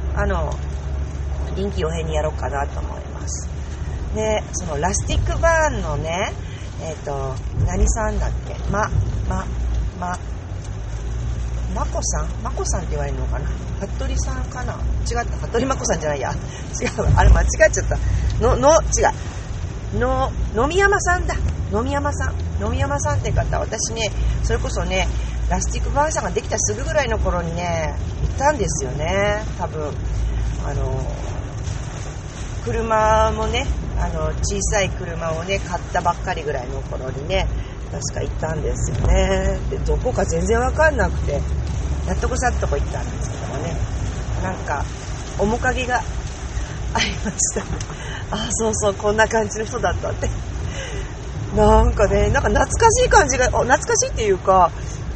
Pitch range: 70-105 Hz